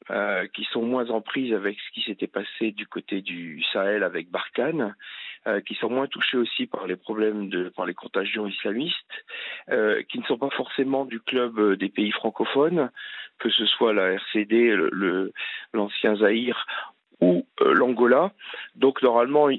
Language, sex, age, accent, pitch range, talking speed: French, male, 50-69, French, 100-125 Hz, 170 wpm